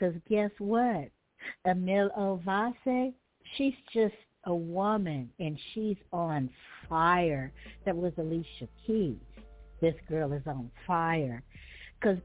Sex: female